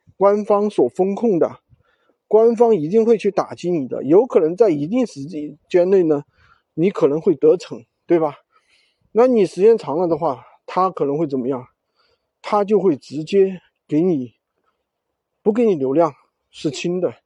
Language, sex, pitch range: Chinese, male, 160-250 Hz